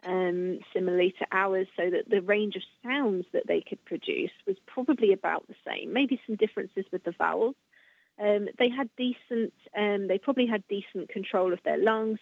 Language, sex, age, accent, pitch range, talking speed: English, female, 30-49, British, 195-250 Hz, 185 wpm